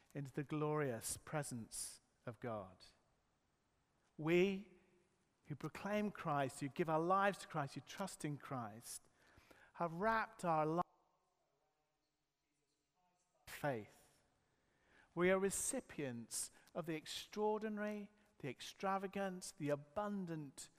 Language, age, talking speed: English, 50-69, 105 wpm